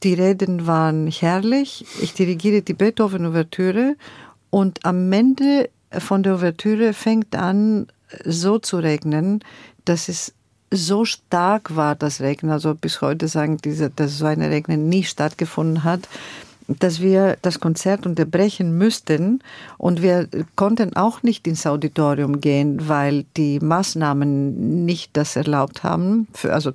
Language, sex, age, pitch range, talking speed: German, female, 50-69, 160-200 Hz, 135 wpm